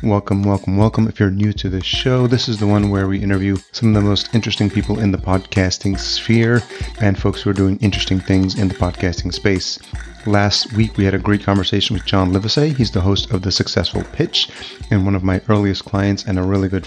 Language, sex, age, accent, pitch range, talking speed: English, male, 30-49, American, 95-105 Hz, 230 wpm